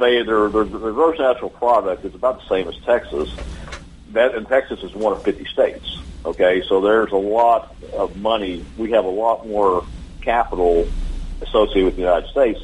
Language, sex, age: English, male, 50-69